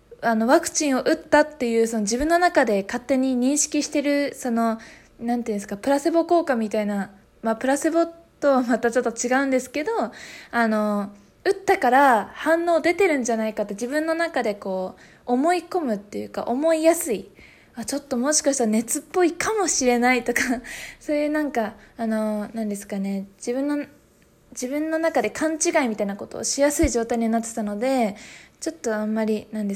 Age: 20-39